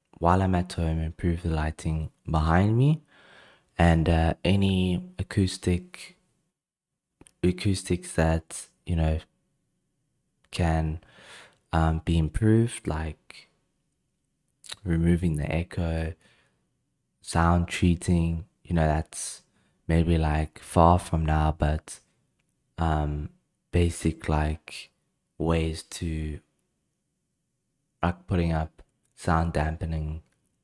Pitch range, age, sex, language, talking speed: 80-90 Hz, 20-39, male, English, 90 wpm